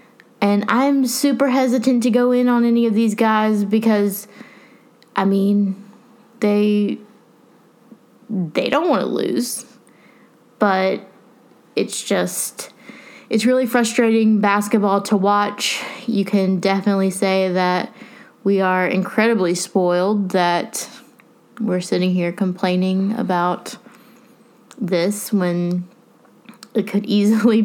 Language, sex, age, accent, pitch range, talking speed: English, female, 20-39, American, 185-235 Hz, 110 wpm